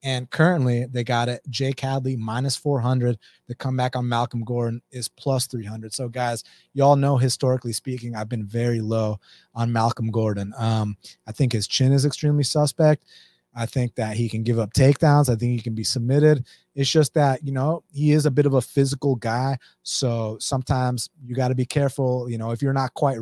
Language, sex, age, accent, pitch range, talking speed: English, male, 30-49, American, 115-140 Hz, 205 wpm